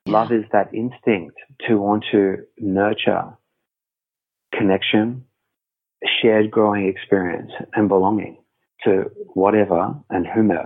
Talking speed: 100 wpm